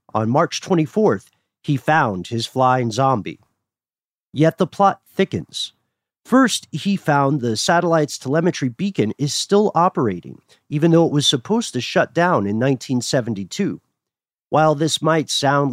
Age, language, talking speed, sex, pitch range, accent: 40-59, English, 135 wpm, male, 120-170 Hz, American